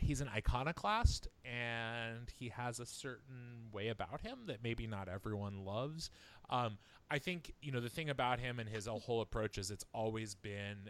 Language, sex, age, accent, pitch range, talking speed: English, male, 20-39, American, 90-105 Hz, 180 wpm